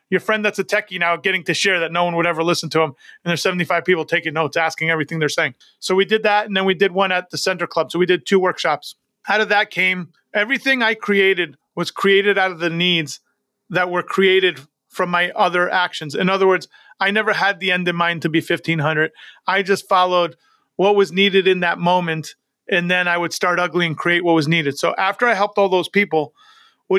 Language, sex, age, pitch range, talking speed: English, male, 30-49, 170-195 Hz, 235 wpm